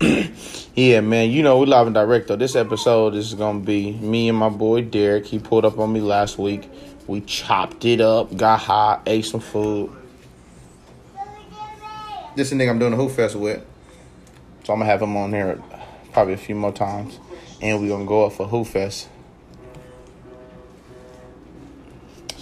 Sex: male